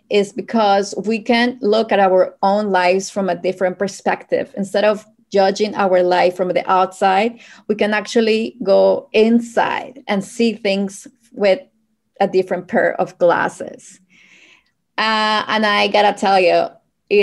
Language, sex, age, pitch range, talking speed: English, female, 20-39, 180-215 Hz, 145 wpm